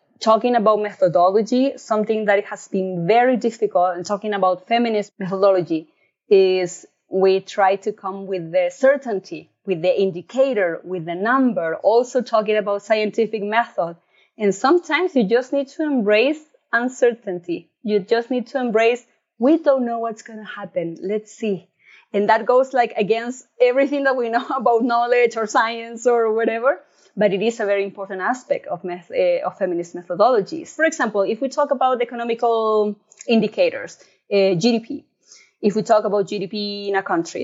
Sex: female